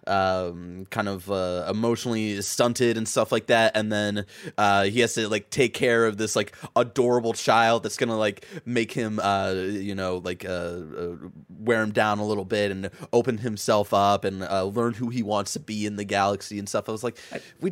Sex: male